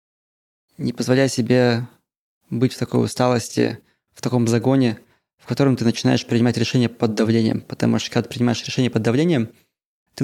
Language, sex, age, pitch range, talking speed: Russian, male, 20-39, 115-130 Hz, 160 wpm